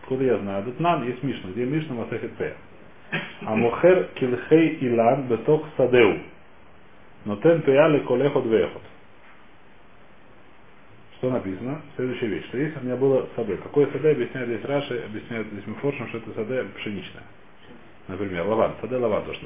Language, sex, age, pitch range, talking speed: Russian, male, 40-59, 105-145 Hz, 150 wpm